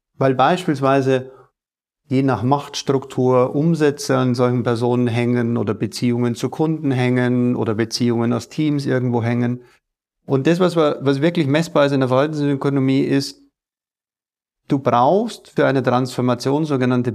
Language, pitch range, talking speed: German, 120-145 Hz, 135 wpm